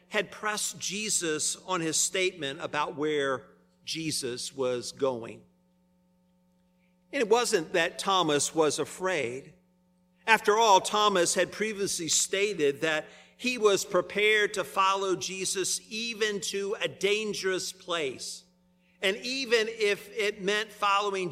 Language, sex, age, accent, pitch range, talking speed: English, male, 50-69, American, 180-200 Hz, 120 wpm